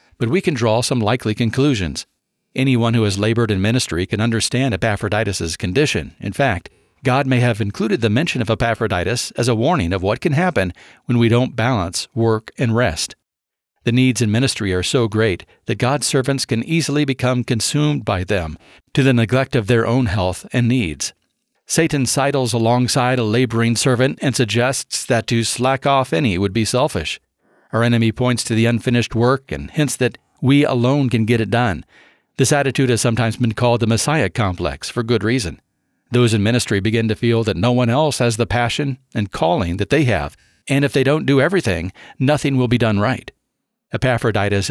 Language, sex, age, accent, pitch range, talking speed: English, male, 50-69, American, 110-130 Hz, 190 wpm